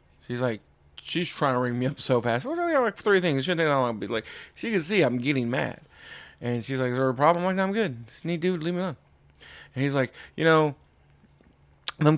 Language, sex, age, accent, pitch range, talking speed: English, male, 20-39, American, 125-170 Hz, 245 wpm